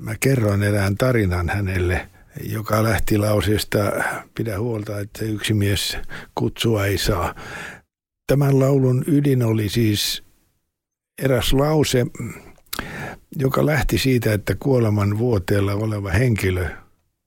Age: 60-79